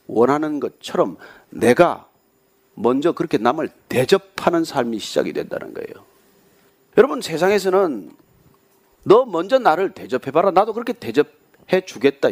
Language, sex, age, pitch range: Korean, male, 40-59, 185-305 Hz